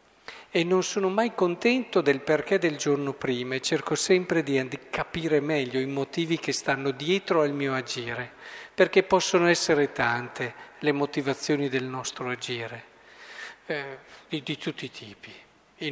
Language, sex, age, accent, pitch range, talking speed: Italian, male, 50-69, native, 135-185 Hz, 155 wpm